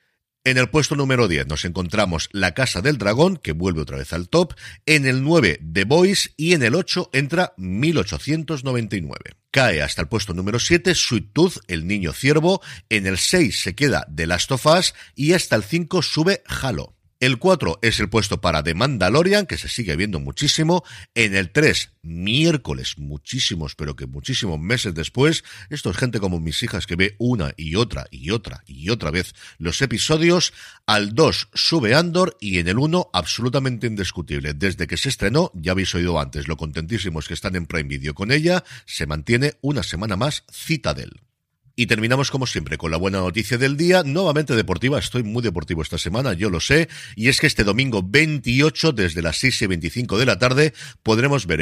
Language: Spanish